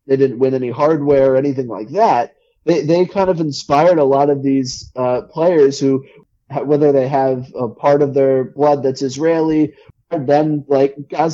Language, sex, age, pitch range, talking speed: English, male, 20-39, 130-150 Hz, 180 wpm